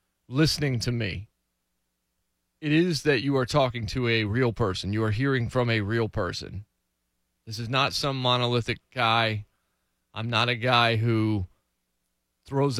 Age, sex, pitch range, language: 30-49, male, 100-130 Hz, English